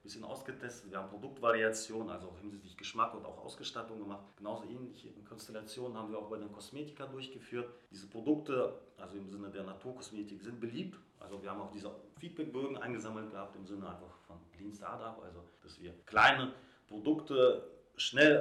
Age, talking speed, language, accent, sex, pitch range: 30-49, 170 wpm, German, German, male, 100-130 Hz